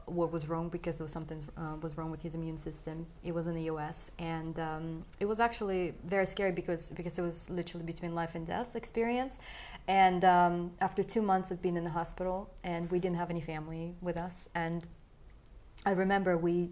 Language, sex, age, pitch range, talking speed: English, female, 30-49, 165-185 Hz, 210 wpm